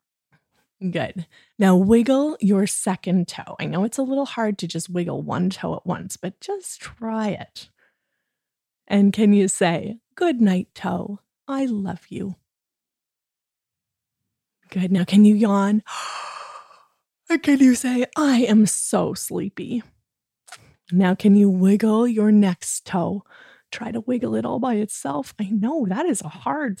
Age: 20-39